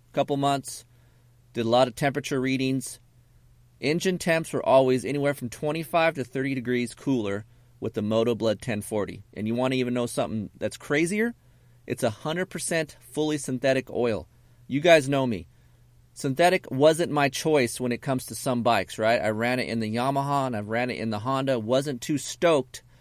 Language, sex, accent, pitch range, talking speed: English, male, American, 120-145 Hz, 185 wpm